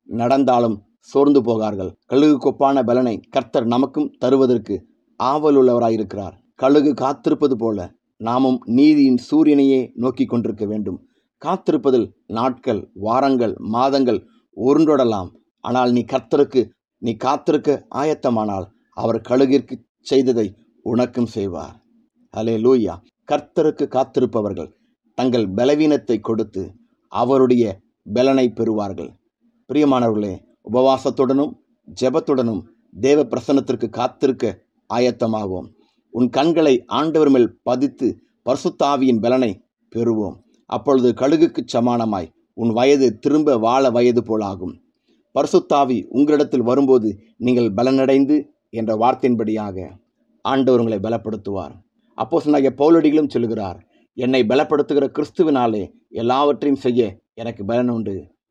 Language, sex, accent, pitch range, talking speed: Tamil, male, native, 115-140 Hz, 90 wpm